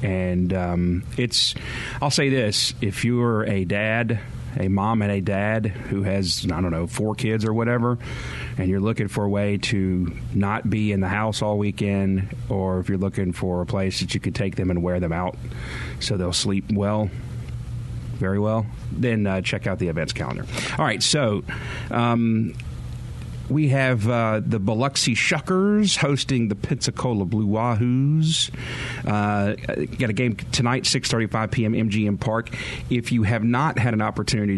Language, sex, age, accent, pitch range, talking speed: English, male, 40-59, American, 95-120 Hz, 170 wpm